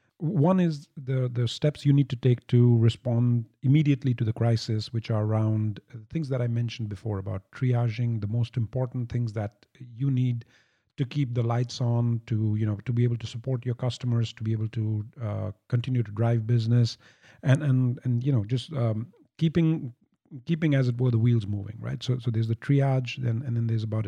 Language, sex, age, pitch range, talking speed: English, male, 50-69, 115-135 Hz, 205 wpm